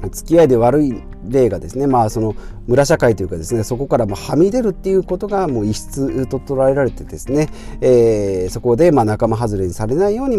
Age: 40-59